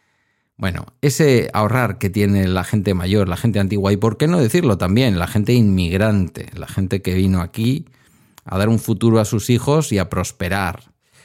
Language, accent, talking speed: Spanish, Spanish, 185 wpm